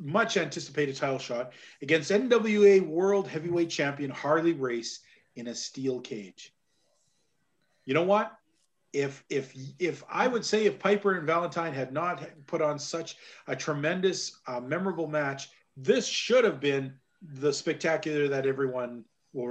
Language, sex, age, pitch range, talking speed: English, male, 40-59, 145-195 Hz, 145 wpm